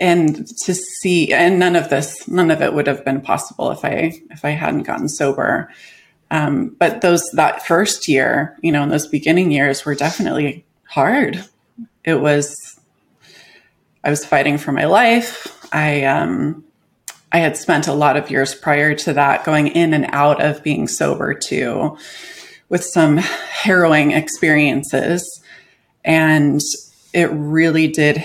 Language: English